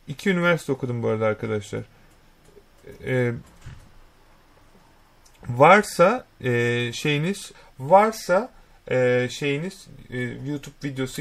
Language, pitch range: Turkish, 130-165 Hz